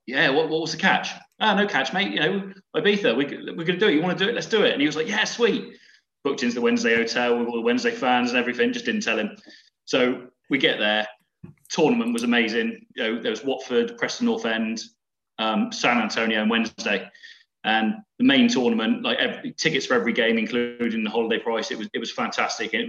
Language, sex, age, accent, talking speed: English, male, 20-39, British, 225 wpm